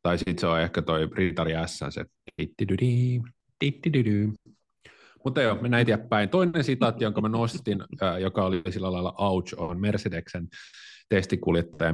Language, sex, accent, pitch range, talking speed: Finnish, male, native, 85-105 Hz, 145 wpm